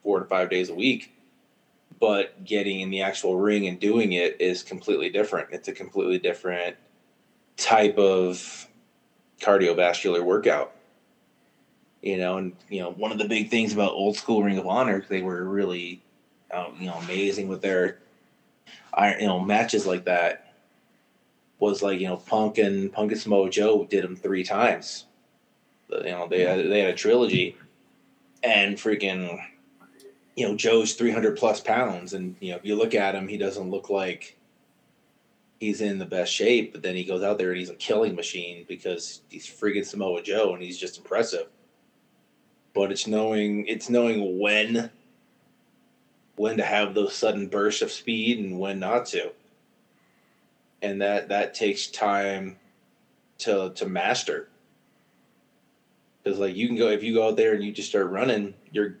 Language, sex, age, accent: English, male, 20-39, American